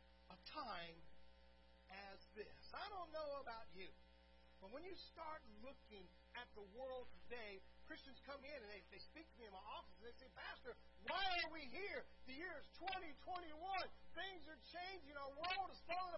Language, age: English, 40-59